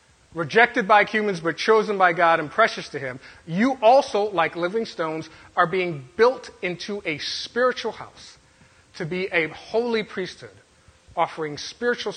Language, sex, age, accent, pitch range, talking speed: English, male, 30-49, American, 165-220 Hz, 150 wpm